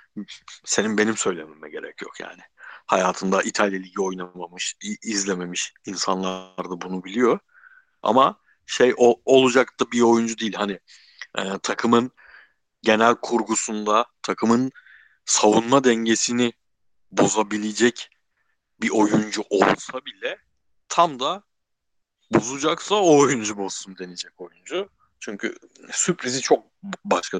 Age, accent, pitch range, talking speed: 60-79, native, 95-120 Hz, 105 wpm